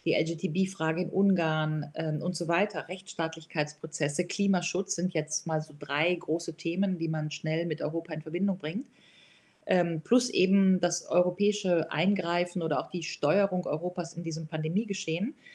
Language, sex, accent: German, female, German